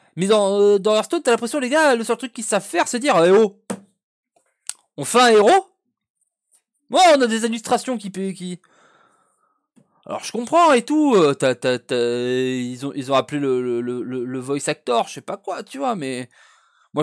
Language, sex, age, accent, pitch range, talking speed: French, male, 20-39, French, 155-250 Hz, 210 wpm